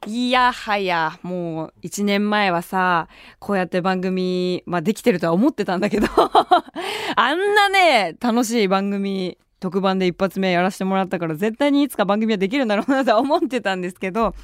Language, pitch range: Japanese, 175-245 Hz